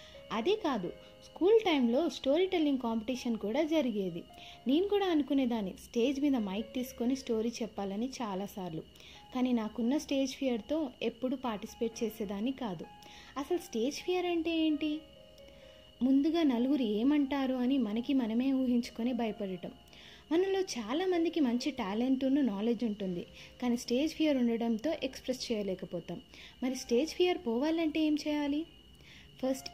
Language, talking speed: Telugu, 120 wpm